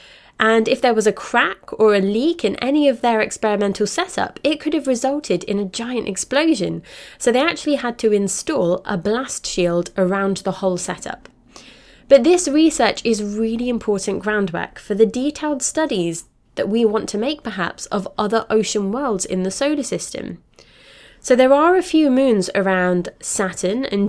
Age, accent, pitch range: 20-39, British, 190-250 Hz